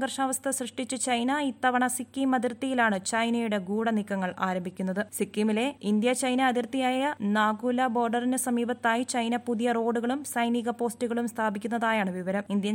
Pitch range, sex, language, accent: 220-270 Hz, female, Malayalam, native